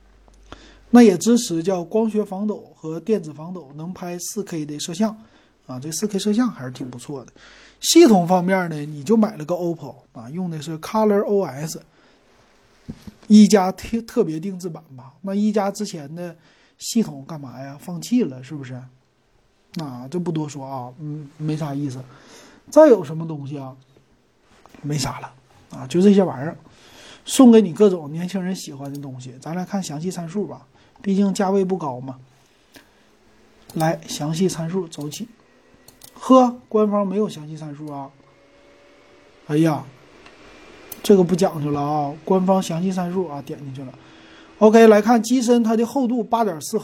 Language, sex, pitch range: Chinese, male, 145-205 Hz